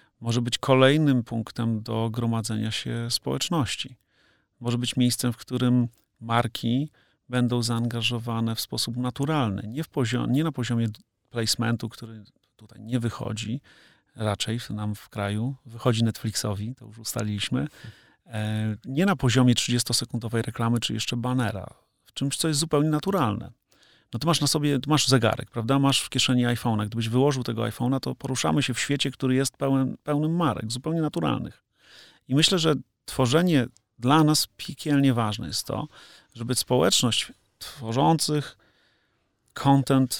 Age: 40-59